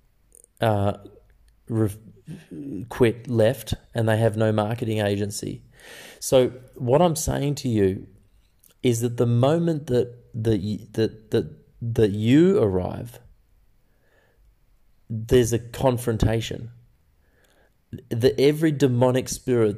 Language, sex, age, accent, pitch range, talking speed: English, male, 30-49, Australian, 110-130 Hz, 105 wpm